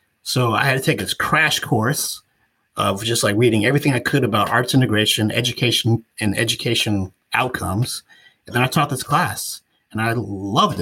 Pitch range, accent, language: 110-145 Hz, American, English